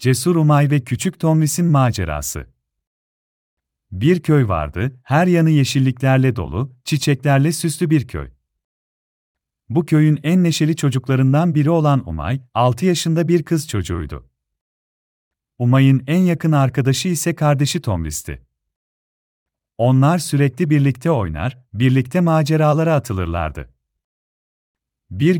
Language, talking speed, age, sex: Turkish, 105 wpm, 40-59, male